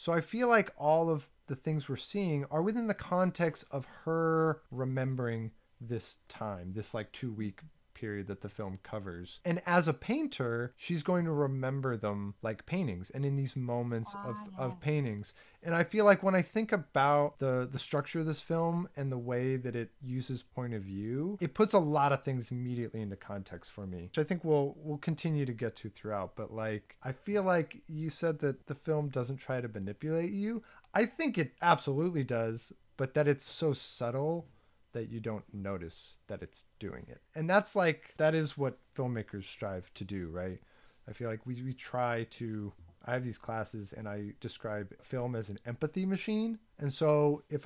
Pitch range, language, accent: 110-160 Hz, English, American